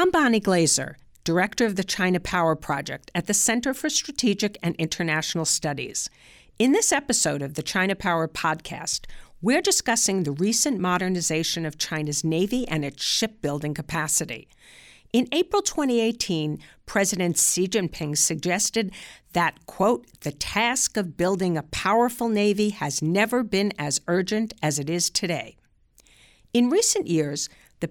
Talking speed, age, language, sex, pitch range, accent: 140 wpm, 50-69, English, female, 160-225 Hz, American